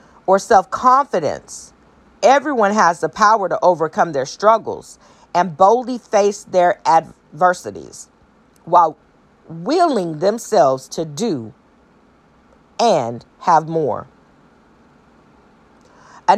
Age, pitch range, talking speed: 40-59, 180-230 Hz, 90 wpm